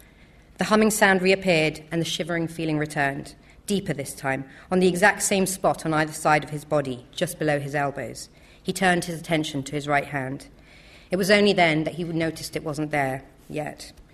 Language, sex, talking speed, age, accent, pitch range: English, female, 195 wpm, 40-59, British, 150-175 Hz